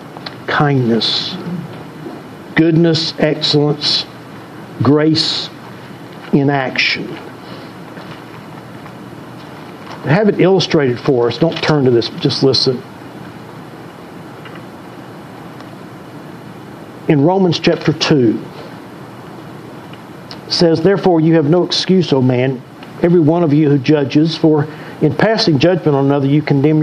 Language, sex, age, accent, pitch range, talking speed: English, male, 60-79, American, 145-165 Hz, 100 wpm